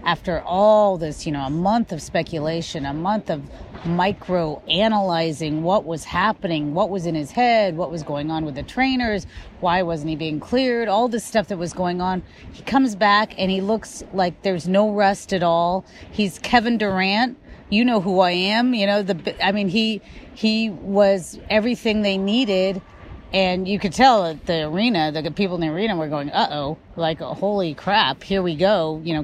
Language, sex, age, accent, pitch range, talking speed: English, female, 30-49, American, 170-210 Hz, 195 wpm